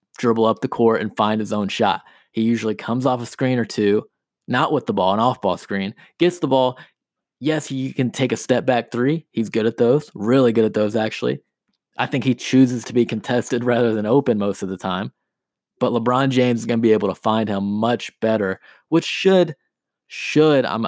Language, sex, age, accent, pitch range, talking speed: English, male, 20-39, American, 110-135 Hz, 215 wpm